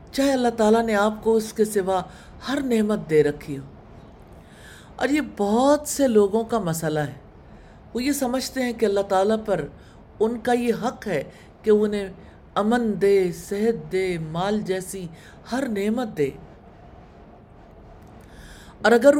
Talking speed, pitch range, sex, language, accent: 125 wpm, 165-240 Hz, female, English, Indian